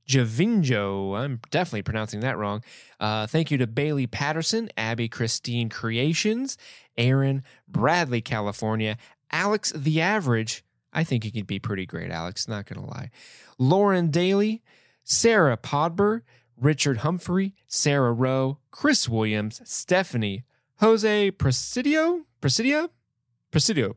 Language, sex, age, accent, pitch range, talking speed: English, male, 20-39, American, 110-155 Hz, 120 wpm